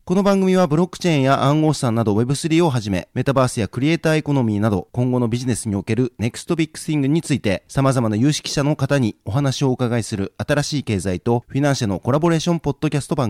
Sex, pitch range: male, 115-155 Hz